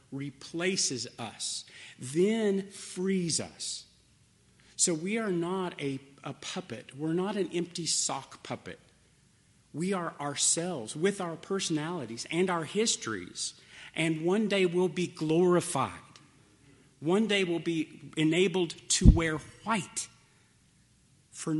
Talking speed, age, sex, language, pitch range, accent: 115 wpm, 50-69, male, English, 125-165 Hz, American